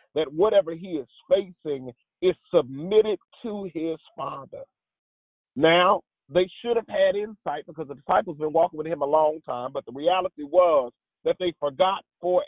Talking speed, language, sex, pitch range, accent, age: 170 wpm, English, male, 150-185 Hz, American, 40-59